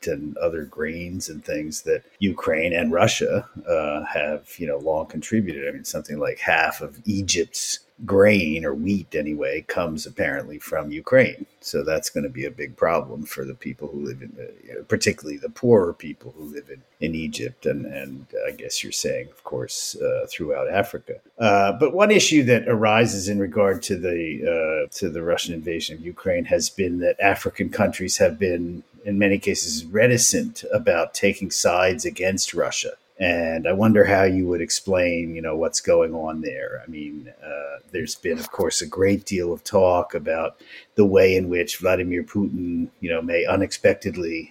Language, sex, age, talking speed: English, male, 50-69, 185 wpm